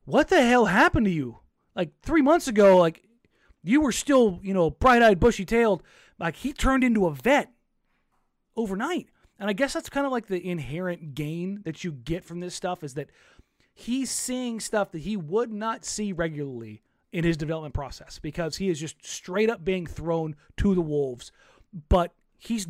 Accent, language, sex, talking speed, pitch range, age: American, English, male, 180 wpm, 170-230 Hz, 30-49